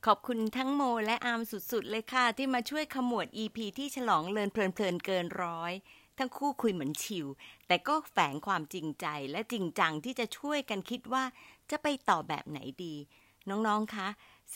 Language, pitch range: Thai, 170-260 Hz